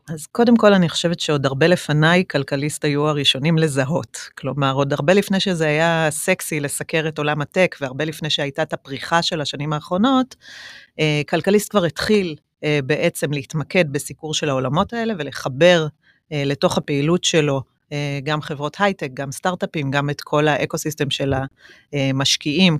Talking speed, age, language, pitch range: 145 wpm, 30-49, Hebrew, 140-175 Hz